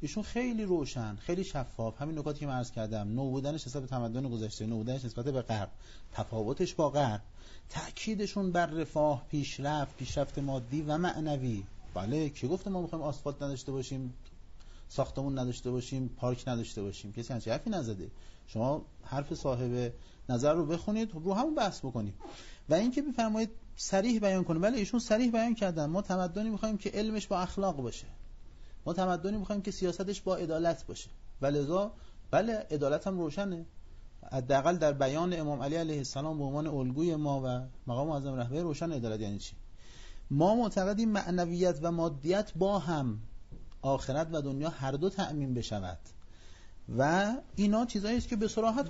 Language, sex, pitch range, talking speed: Persian, male, 125-190 Hz, 160 wpm